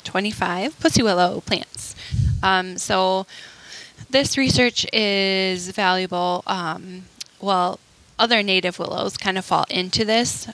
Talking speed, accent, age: 115 wpm, American, 10-29